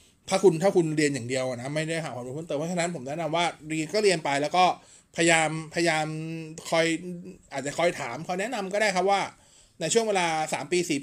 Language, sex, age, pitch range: Thai, male, 20-39, 145-190 Hz